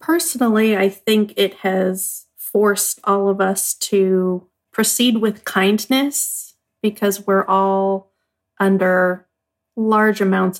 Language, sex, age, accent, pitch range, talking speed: English, female, 40-59, American, 185-220 Hz, 110 wpm